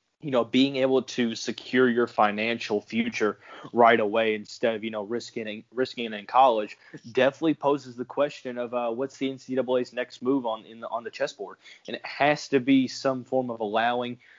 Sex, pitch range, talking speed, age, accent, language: male, 110-130 Hz, 185 wpm, 20-39, American, English